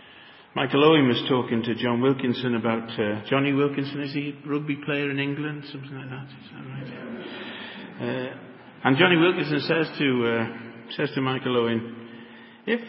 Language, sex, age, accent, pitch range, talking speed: English, male, 50-69, British, 120-165 Hz, 170 wpm